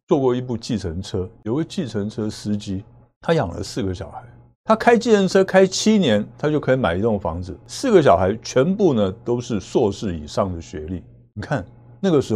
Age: 60-79